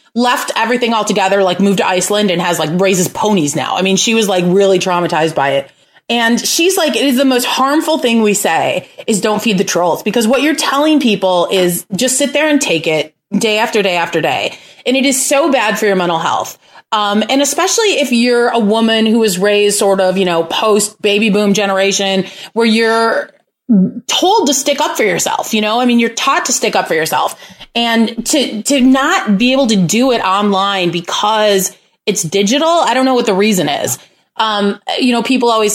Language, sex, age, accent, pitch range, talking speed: English, female, 30-49, American, 195-265 Hz, 215 wpm